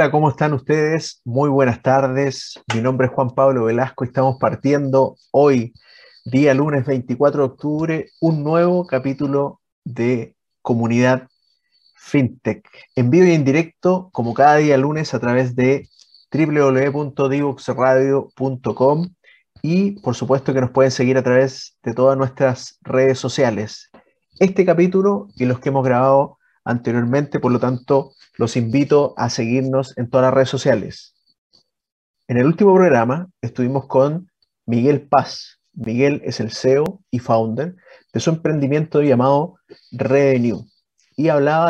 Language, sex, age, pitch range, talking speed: Spanish, male, 30-49, 125-150 Hz, 135 wpm